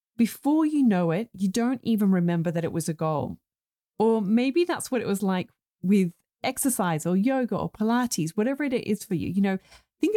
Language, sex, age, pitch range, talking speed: English, female, 30-49, 175-235 Hz, 200 wpm